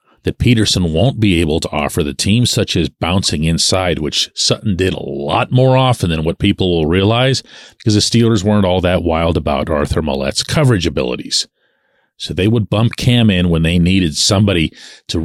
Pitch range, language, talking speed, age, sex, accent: 95-130 Hz, English, 190 wpm, 40-59, male, American